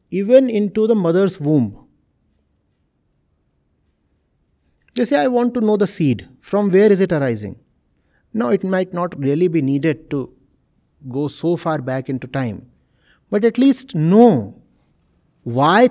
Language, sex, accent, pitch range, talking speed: English, male, Indian, 130-195 Hz, 140 wpm